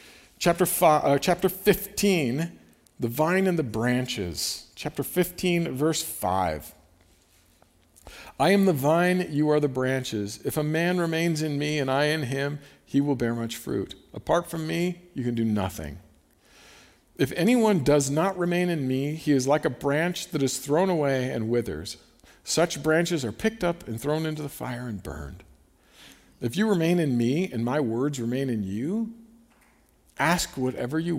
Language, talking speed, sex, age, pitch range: English, 165 wpm, male, 50-69, 110-165 Hz